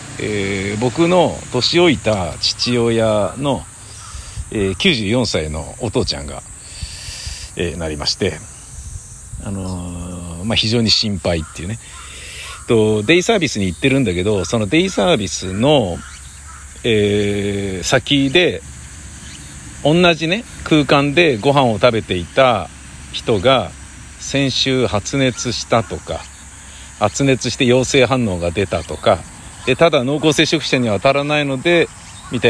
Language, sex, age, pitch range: Japanese, male, 60-79, 95-130 Hz